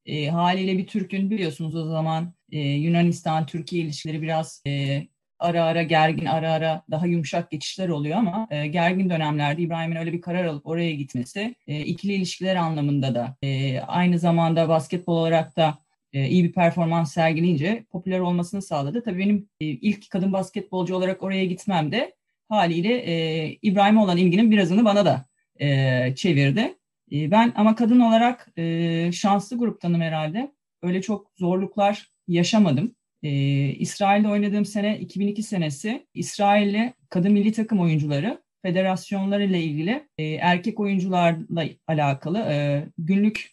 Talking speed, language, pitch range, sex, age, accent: 140 wpm, Turkish, 160-200 Hz, female, 30-49, native